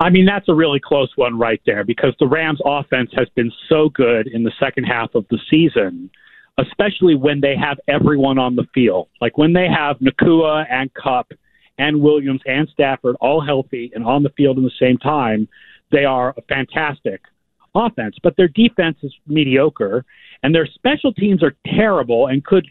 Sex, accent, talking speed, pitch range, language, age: male, American, 190 wpm, 130-180 Hz, English, 50-69